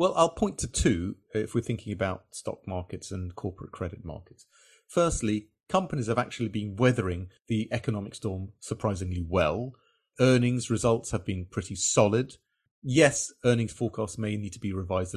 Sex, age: male, 30-49